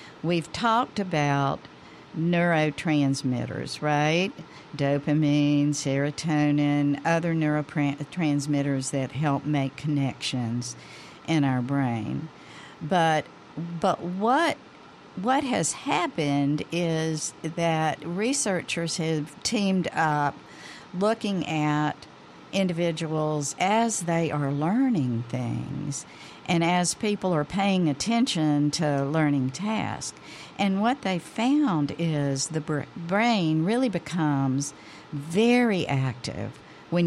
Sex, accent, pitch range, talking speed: female, American, 145-180 Hz, 90 wpm